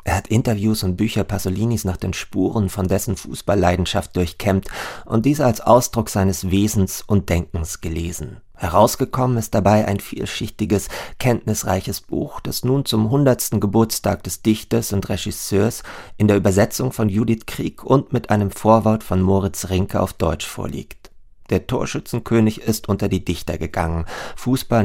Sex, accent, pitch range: male, German, 95-110 Hz